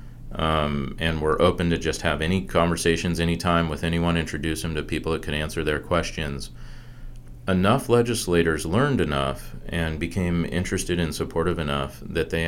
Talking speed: 160 wpm